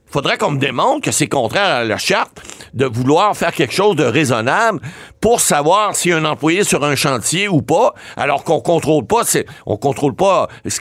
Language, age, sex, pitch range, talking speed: French, 60-79, male, 135-185 Hz, 195 wpm